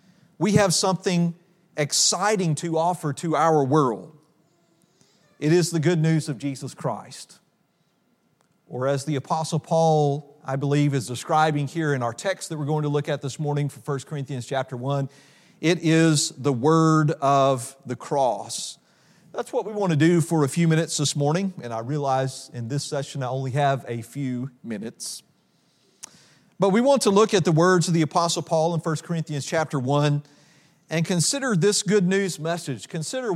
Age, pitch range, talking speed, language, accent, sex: 40-59, 145-185 Hz, 175 wpm, English, American, male